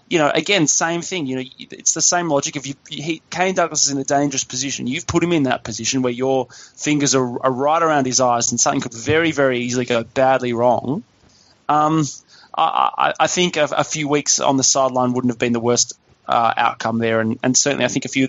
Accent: Australian